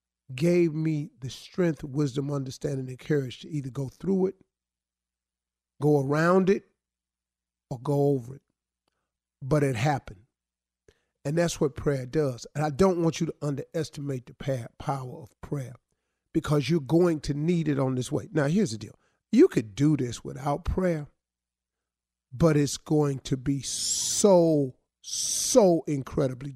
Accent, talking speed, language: American, 150 wpm, English